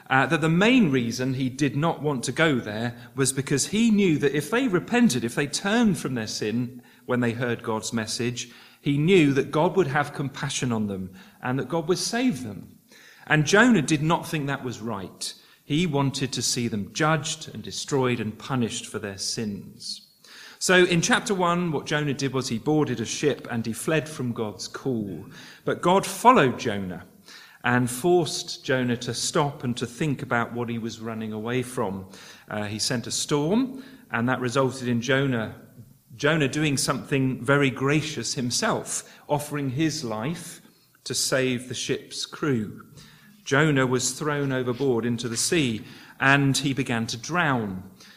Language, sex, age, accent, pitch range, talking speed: English, male, 40-59, British, 120-155 Hz, 175 wpm